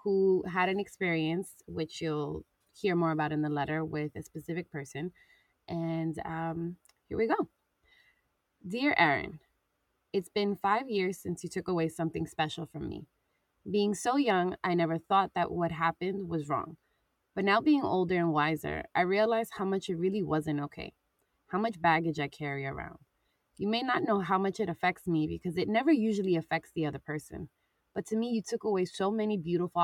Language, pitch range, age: English, 160-200 Hz, 20-39